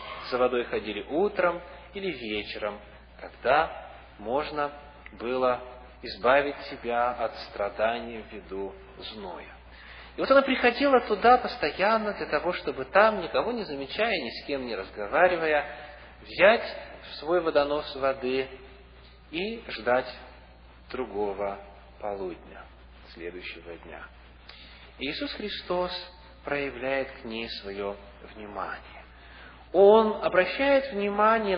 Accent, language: native, Russian